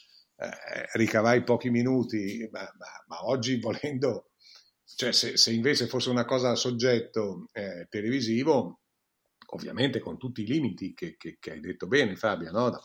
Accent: native